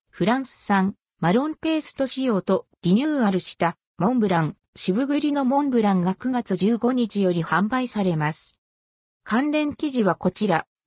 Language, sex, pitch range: Japanese, female, 175-260 Hz